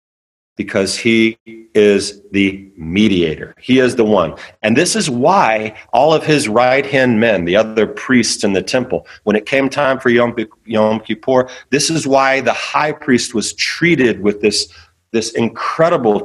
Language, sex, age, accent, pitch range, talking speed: English, male, 40-59, American, 105-135 Hz, 165 wpm